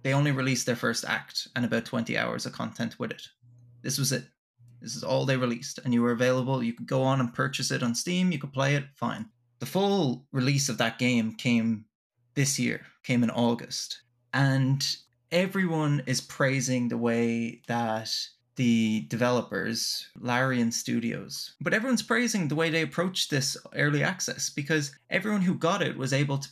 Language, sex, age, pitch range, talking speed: English, male, 20-39, 120-155 Hz, 185 wpm